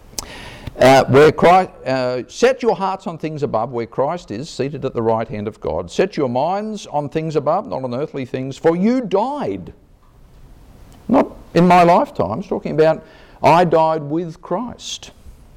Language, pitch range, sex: English, 110-175 Hz, male